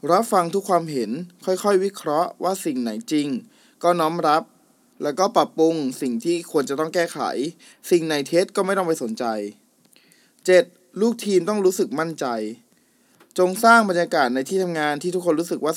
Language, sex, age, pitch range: Thai, male, 20-39, 140-185 Hz